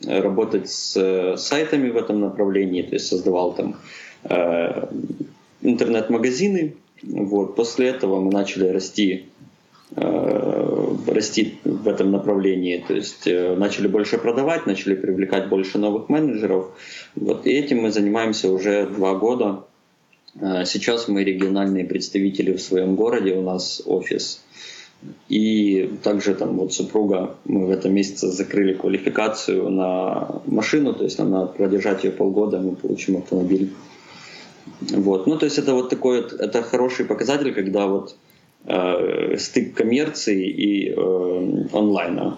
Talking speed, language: 130 wpm, Russian